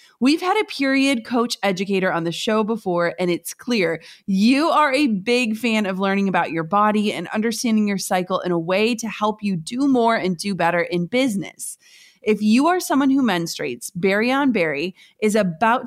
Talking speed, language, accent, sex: 195 wpm, English, American, female